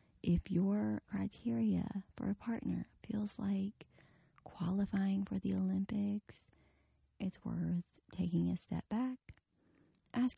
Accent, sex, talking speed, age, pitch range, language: American, female, 110 wpm, 20-39, 180-215 Hz, English